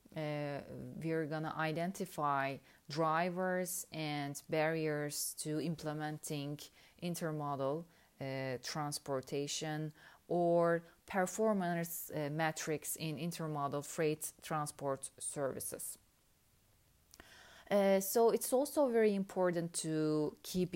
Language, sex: Turkish, female